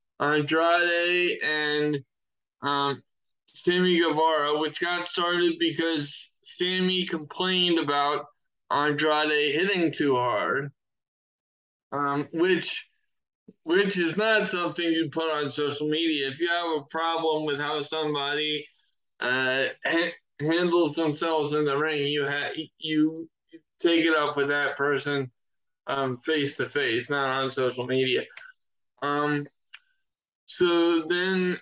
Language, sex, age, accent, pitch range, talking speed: English, male, 20-39, American, 145-170 Hz, 115 wpm